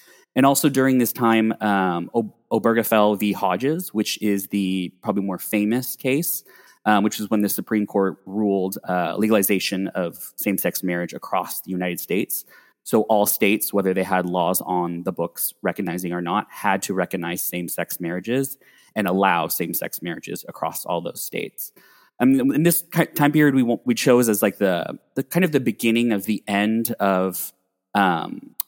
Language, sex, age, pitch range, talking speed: English, male, 20-39, 95-125 Hz, 180 wpm